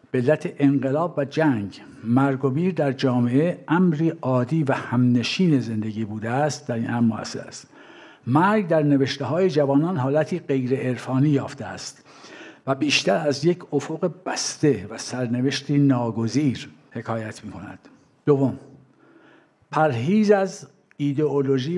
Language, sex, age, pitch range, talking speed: Persian, male, 60-79, 120-150 Hz, 130 wpm